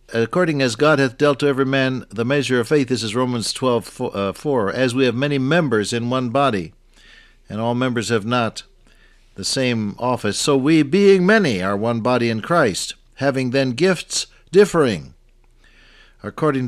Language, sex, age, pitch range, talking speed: English, male, 60-79, 115-145 Hz, 170 wpm